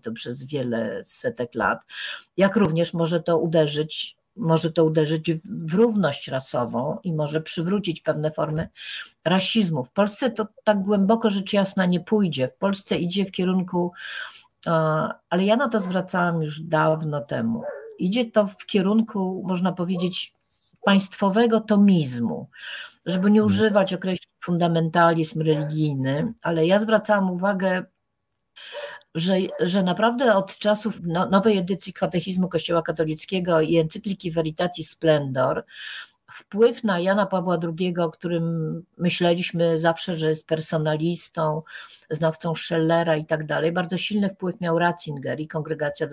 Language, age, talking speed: Polish, 50-69, 130 wpm